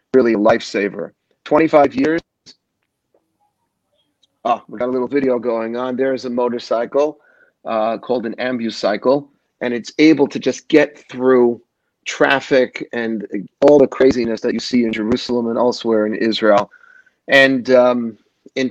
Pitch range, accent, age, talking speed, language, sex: 120-140 Hz, American, 40-59, 140 wpm, English, male